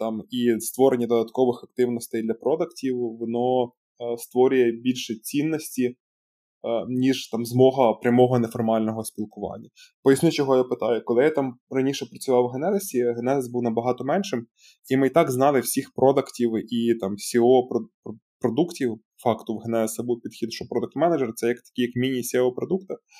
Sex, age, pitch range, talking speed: male, 20-39, 120-140 Hz, 145 wpm